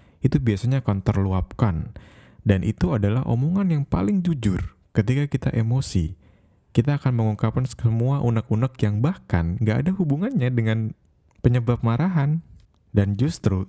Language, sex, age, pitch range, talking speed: Indonesian, male, 20-39, 95-120 Hz, 125 wpm